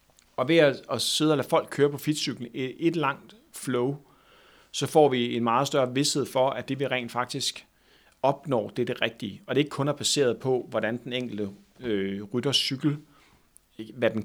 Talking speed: 200 wpm